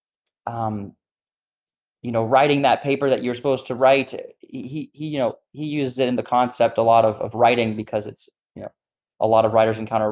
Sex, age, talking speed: male, 20-39, 210 wpm